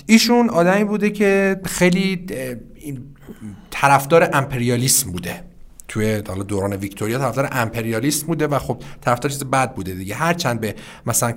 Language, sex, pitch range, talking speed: Persian, male, 115-160 Hz, 135 wpm